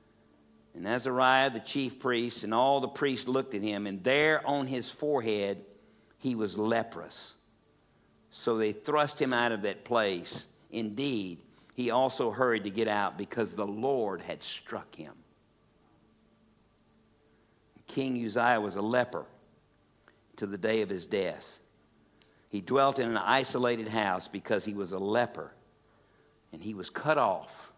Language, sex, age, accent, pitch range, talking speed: English, male, 60-79, American, 105-130 Hz, 145 wpm